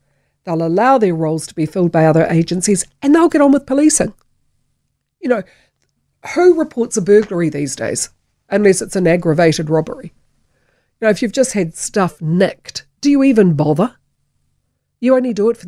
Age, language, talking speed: 50-69, English, 175 wpm